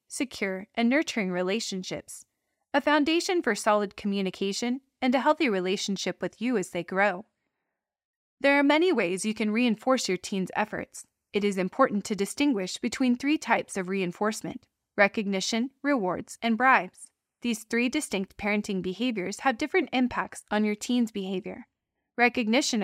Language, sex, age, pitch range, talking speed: English, female, 20-39, 195-260 Hz, 145 wpm